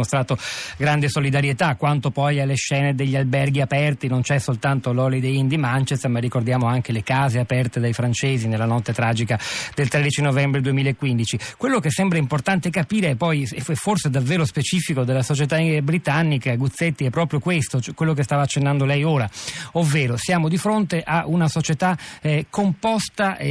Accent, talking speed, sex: native, 170 wpm, male